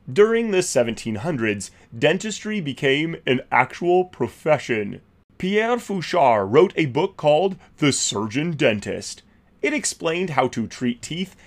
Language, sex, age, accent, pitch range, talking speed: English, male, 30-49, American, 115-175 Hz, 115 wpm